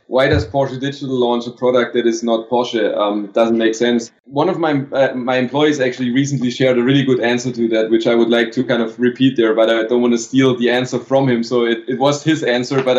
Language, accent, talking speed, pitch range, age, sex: English, German, 265 wpm, 120-135 Hz, 20-39, male